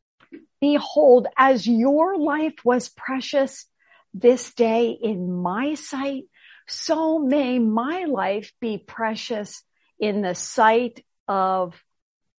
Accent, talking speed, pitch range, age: American, 100 wpm, 195-270 Hz, 50-69